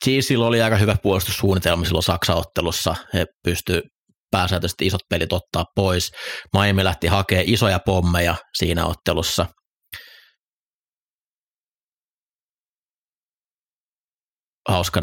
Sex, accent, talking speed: male, native, 90 wpm